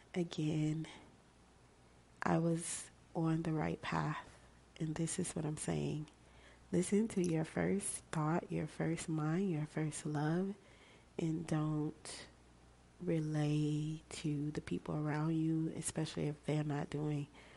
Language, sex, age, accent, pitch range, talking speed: English, female, 30-49, American, 145-160 Hz, 125 wpm